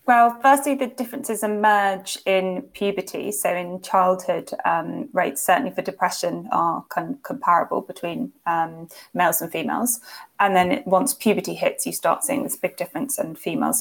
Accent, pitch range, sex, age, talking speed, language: British, 185-250 Hz, female, 20-39, 150 wpm, English